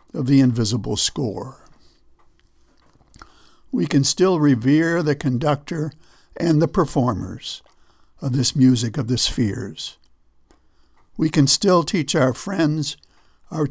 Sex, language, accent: male, English, American